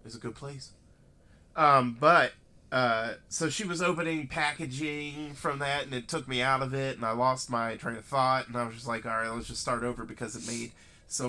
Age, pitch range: 30-49, 115-145 Hz